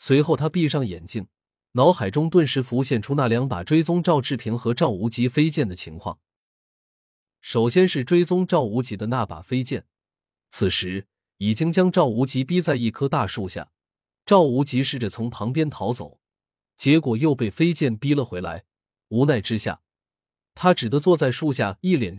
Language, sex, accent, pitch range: Chinese, male, native, 105-150 Hz